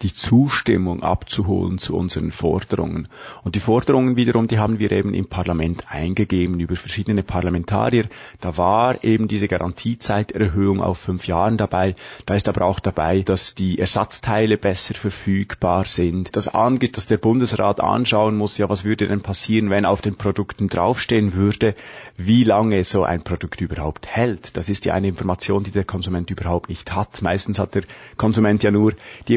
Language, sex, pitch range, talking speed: German, male, 95-110 Hz, 170 wpm